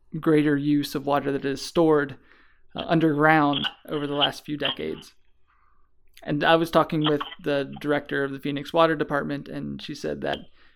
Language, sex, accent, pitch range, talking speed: English, male, American, 145-160 Hz, 165 wpm